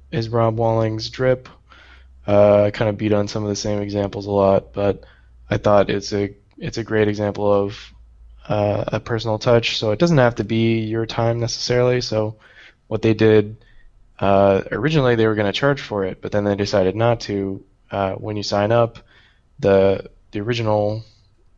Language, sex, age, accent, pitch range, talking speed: English, male, 20-39, American, 100-115 Hz, 185 wpm